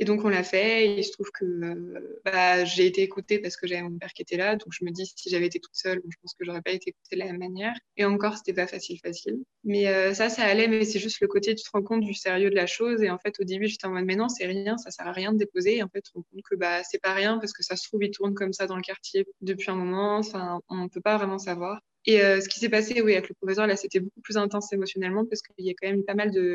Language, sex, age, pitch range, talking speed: French, female, 20-39, 180-210 Hz, 330 wpm